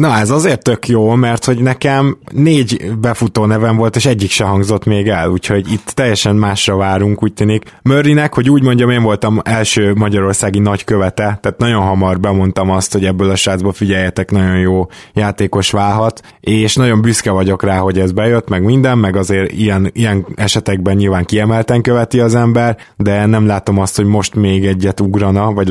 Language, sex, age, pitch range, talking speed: Hungarian, male, 20-39, 100-115 Hz, 180 wpm